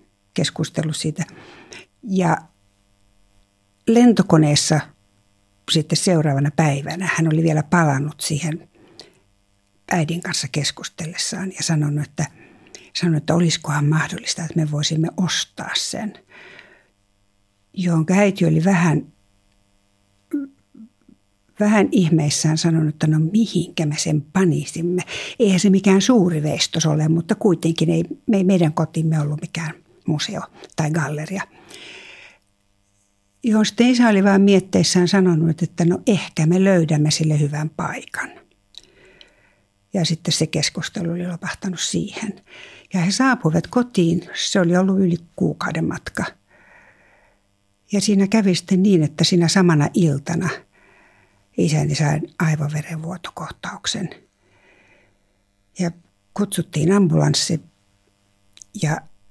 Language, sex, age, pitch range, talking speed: English, female, 60-79, 145-180 Hz, 105 wpm